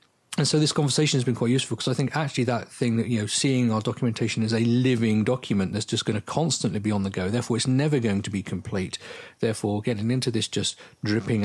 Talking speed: 240 wpm